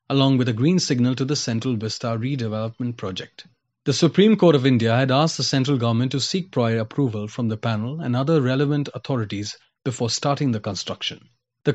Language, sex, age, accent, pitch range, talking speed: English, male, 30-49, Indian, 120-145 Hz, 190 wpm